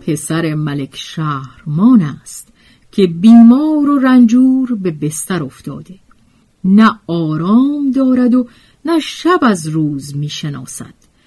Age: 50-69